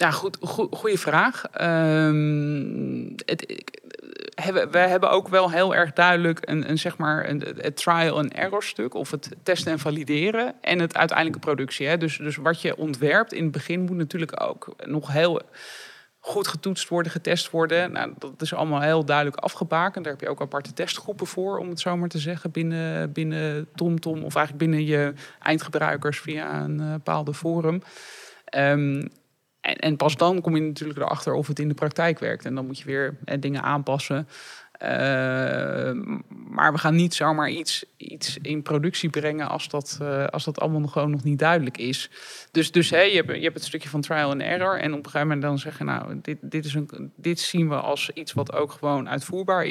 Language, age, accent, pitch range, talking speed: Dutch, 20-39, Dutch, 145-170 Hz, 195 wpm